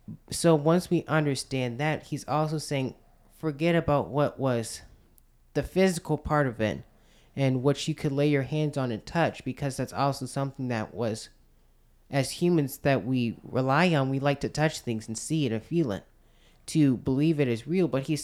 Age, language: 20-39, English